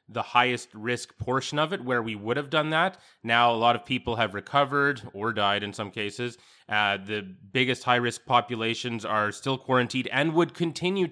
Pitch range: 115-135 Hz